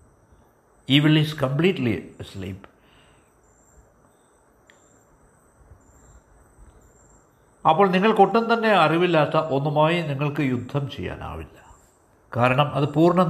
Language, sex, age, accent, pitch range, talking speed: Malayalam, male, 60-79, native, 105-165 Hz, 70 wpm